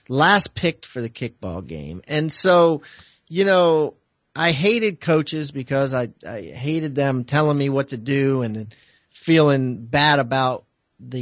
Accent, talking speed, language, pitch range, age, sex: American, 150 wpm, English, 120-145 Hz, 40-59, male